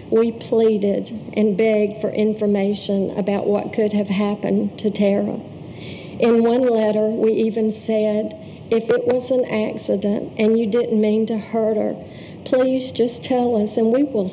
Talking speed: 160 wpm